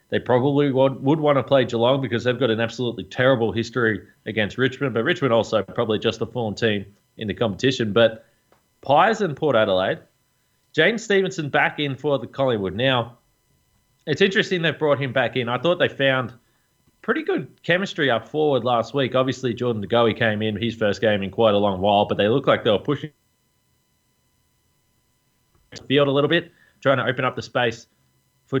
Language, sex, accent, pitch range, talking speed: English, male, Australian, 110-135 Hz, 190 wpm